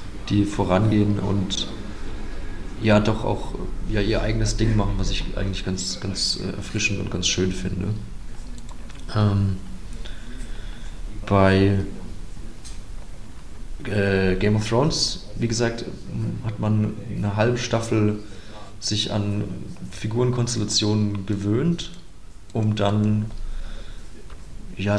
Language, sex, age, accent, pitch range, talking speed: German, male, 30-49, German, 95-110 Hz, 100 wpm